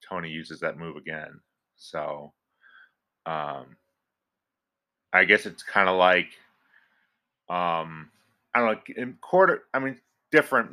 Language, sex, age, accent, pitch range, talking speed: English, male, 30-49, American, 90-115 Hz, 115 wpm